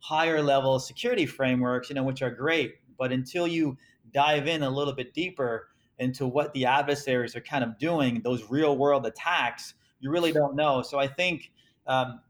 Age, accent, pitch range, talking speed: 30-49, American, 125-155 Hz, 185 wpm